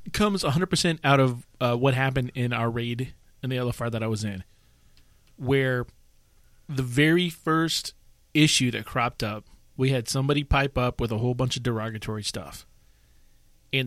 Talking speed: 170 wpm